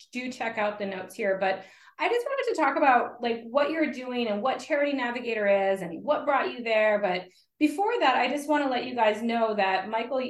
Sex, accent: female, American